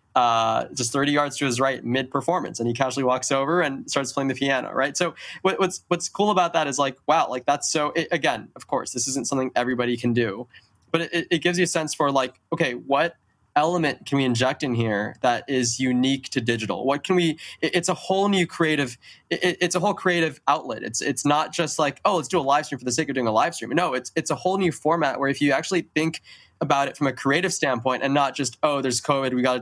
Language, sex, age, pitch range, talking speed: English, male, 20-39, 125-160 Hz, 255 wpm